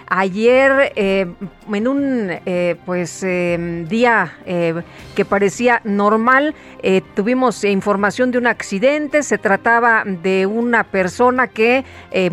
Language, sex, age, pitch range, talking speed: Spanish, female, 40-59, 195-250 Hz, 120 wpm